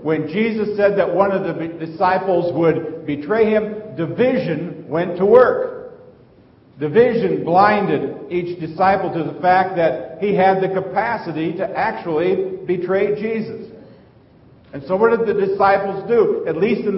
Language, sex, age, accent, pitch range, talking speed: English, male, 50-69, American, 180-235 Hz, 145 wpm